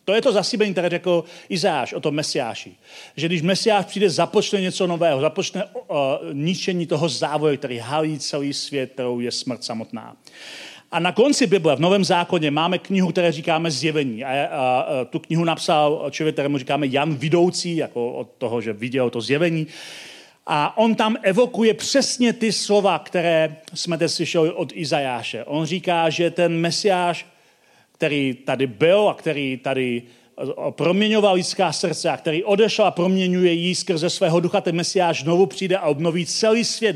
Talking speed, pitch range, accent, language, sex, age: 170 wpm, 155-195 Hz, native, Czech, male, 40-59